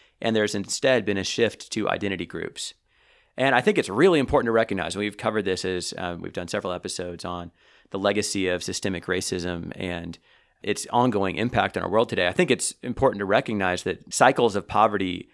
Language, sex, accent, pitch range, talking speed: English, male, American, 90-110 Hz, 200 wpm